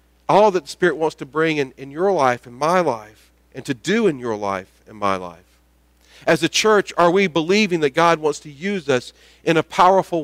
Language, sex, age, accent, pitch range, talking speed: English, male, 40-59, American, 120-180 Hz, 225 wpm